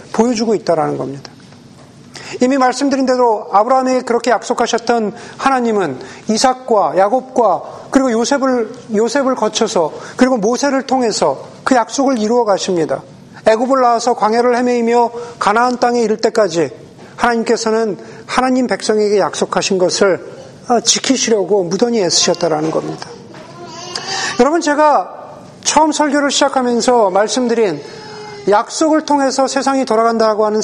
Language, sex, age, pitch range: Korean, male, 40-59, 210-265 Hz